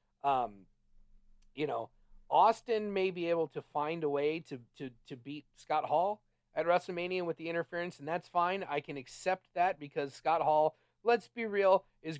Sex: male